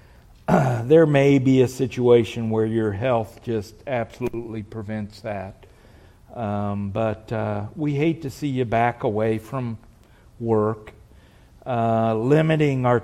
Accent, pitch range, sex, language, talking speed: American, 105-125 Hz, male, English, 130 wpm